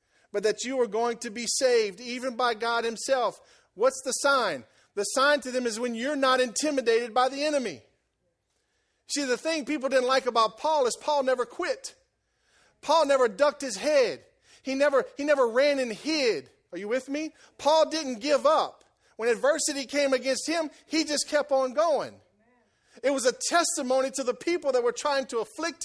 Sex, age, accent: male, 40-59, American